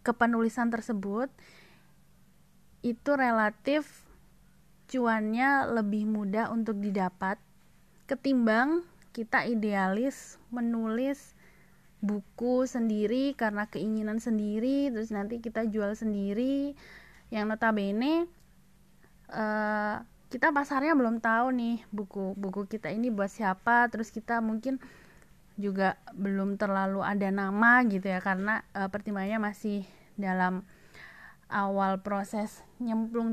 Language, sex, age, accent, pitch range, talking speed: Indonesian, female, 20-39, native, 195-235 Hz, 100 wpm